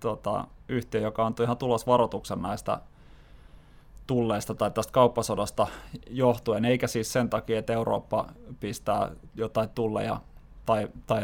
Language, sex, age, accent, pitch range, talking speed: Finnish, male, 20-39, native, 110-125 Hz, 125 wpm